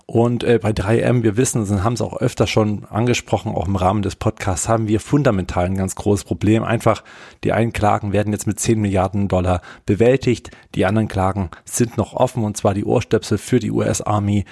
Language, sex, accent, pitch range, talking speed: German, male, German, 95-115 Hz, 200 wpm